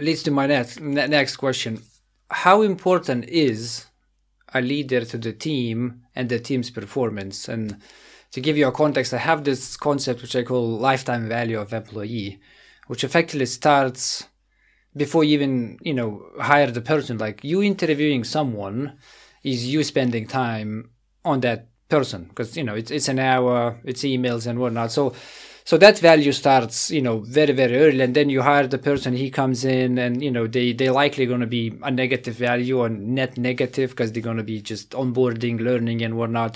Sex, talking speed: male, 185 wpm